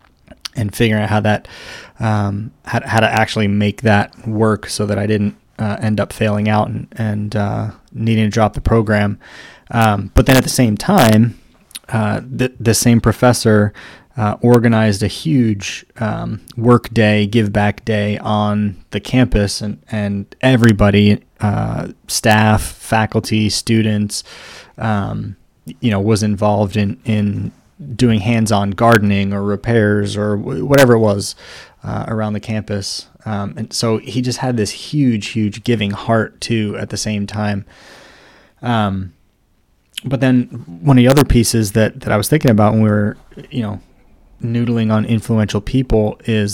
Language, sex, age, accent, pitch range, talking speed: English, male, 20-39, American, 105-115 Hz, 155 wpm